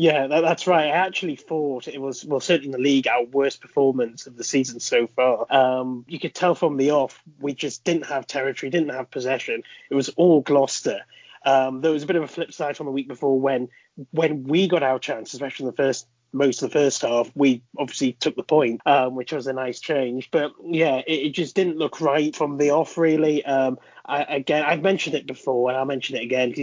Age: 30-49